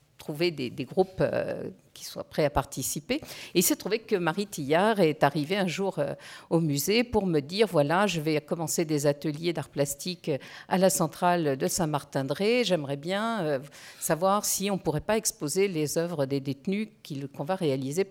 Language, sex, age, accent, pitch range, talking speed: French, female, 50-69, French, 140-190 Hz, 190 wpm